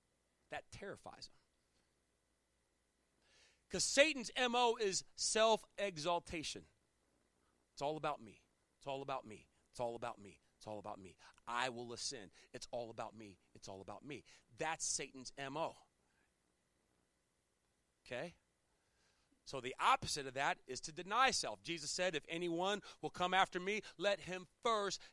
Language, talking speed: English, 140 wpm